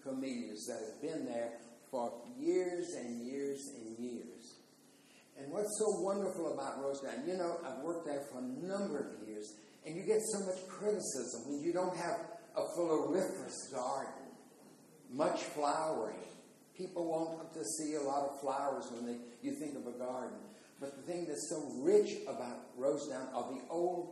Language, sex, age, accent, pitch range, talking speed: English, male, 60-79, American, 120-180 Hz, 165 wpm